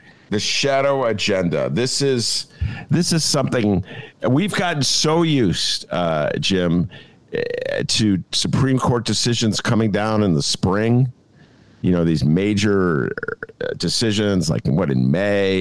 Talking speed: 125 wpm